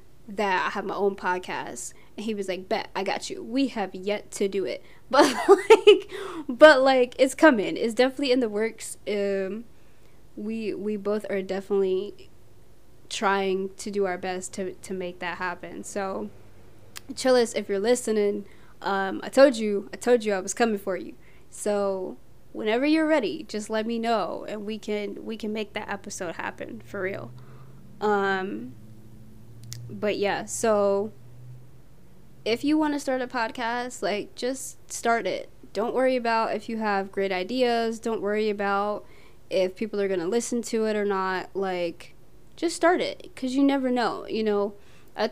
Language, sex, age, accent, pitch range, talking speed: English, female, 20-39, American, 195-245 Hz, 170 wpm